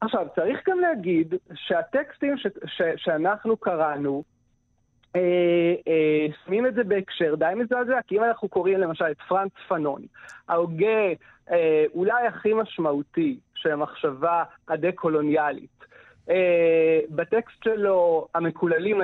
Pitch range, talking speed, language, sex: 160-210 Hz, 115 wpm, Hebrew, male